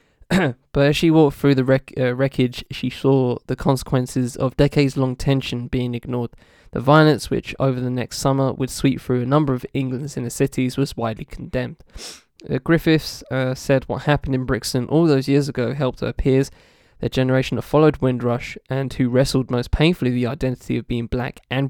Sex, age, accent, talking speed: male, 10-29, Australian, 190 wpm